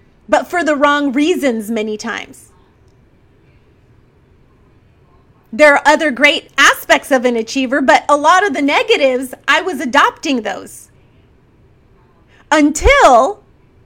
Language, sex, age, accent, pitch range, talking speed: English, female, 30-49, American, 250-345 Hz, 115 wpm